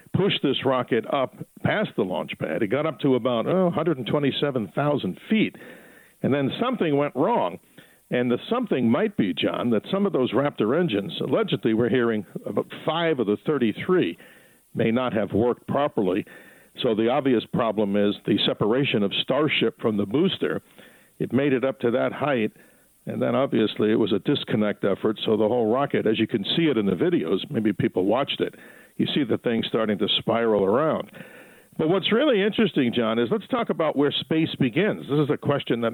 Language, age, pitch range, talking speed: English, 60-79, 120-180 Hz, 190 wpm